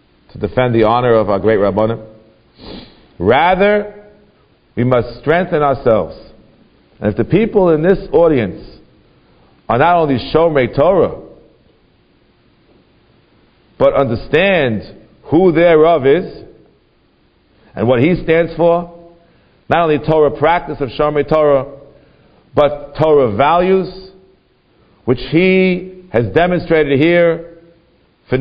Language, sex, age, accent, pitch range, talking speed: English, male, 50-69, American, 135-180 Hz, 105 wpm